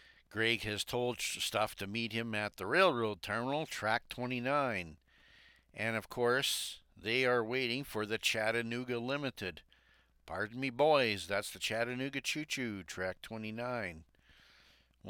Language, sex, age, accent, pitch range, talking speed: English, male, 60-79, American, 95-125 Hz, 130 wpm